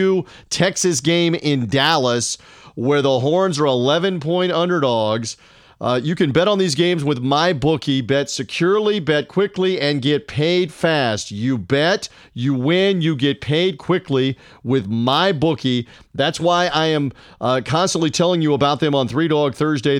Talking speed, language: 160 wpm, English